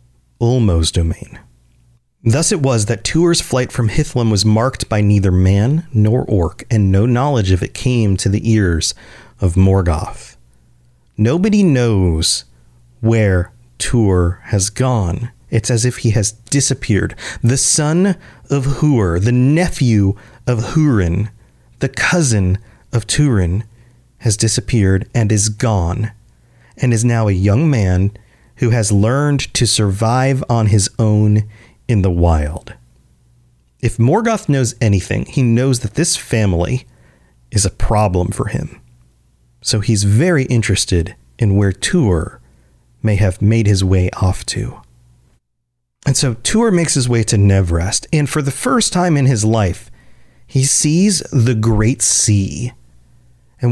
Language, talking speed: English, 140 wpm